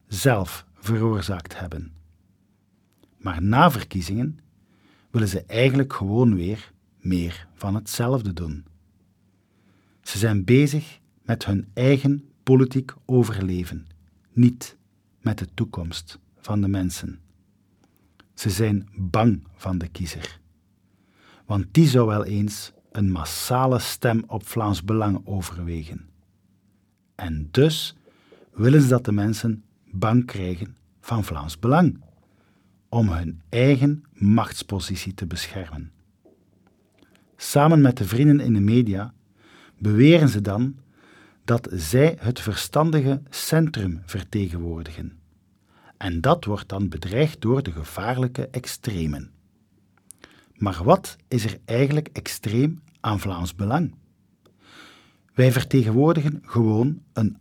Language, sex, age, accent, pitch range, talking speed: Dutch, male, 50-69, Dutch, 95-125 Hz, 110 wpm